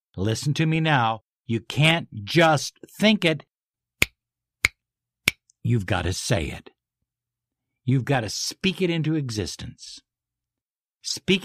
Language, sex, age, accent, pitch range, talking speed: English, male, 60-79, American, 105-150 Hz, 115 wpm